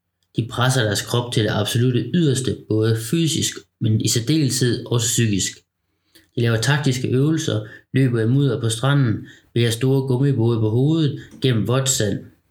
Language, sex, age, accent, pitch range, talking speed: Danish, male, 30-49, native, 110-135 Hz, 150 wpm